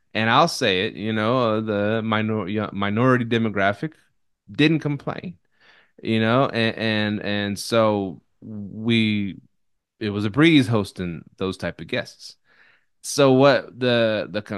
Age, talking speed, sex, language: 20-39, 130 wpm, male, English